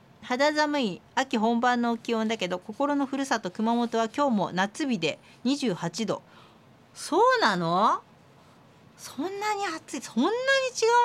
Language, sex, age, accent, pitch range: Japanese, female, 40-59, native, 195-265 Hz